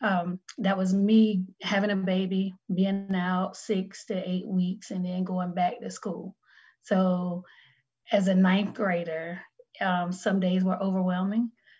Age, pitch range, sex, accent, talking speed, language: 30-49, 185-215 Hz, female, American, 145 wpm, English